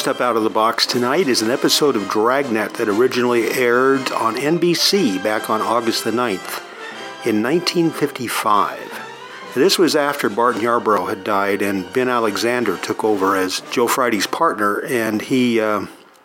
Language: English